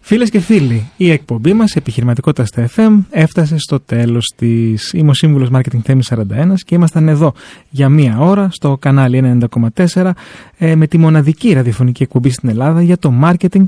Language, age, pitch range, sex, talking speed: Greek, 30-49, 130-170 Hz, male, 160 wpm